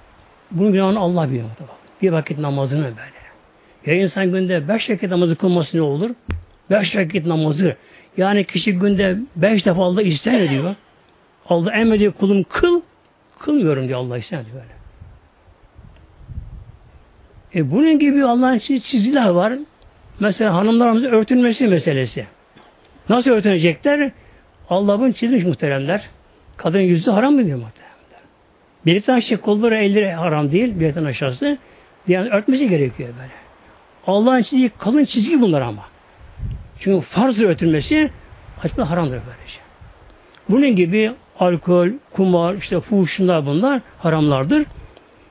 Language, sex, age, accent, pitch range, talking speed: Turkish, male, 60-79, native, 165-230 Hz, 120 wpm